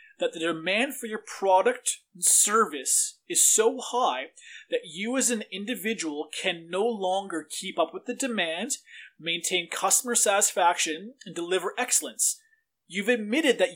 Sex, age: male, 30-49